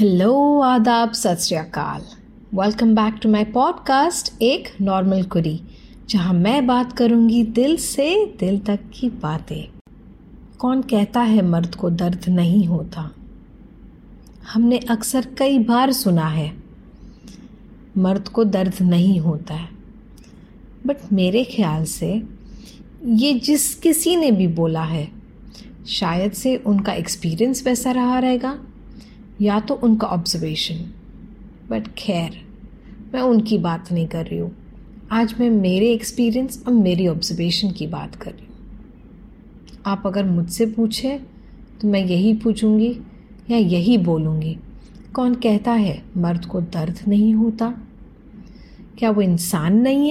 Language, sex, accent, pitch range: English, female, Indian, 180-235 Hz